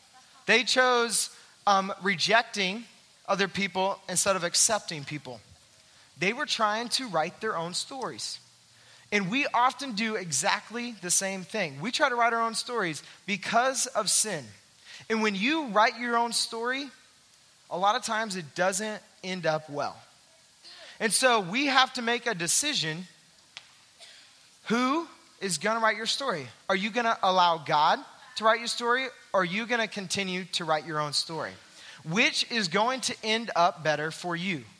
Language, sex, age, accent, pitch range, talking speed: English, male, 20-39, American, 165-230 Hz, 160 wpm